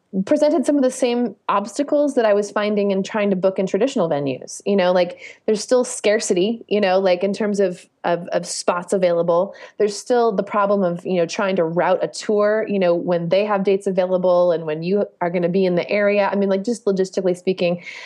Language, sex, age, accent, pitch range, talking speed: English, female, 30-49, American, 185-235 Hz, 225 wpm